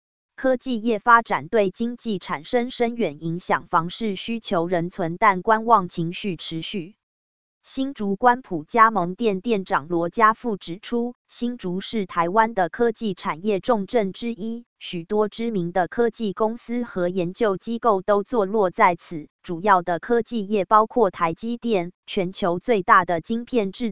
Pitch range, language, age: 180-230 Hz, Chinese, 20-39